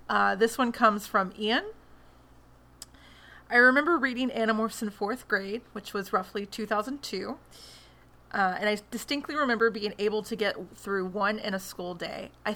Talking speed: 160 wpm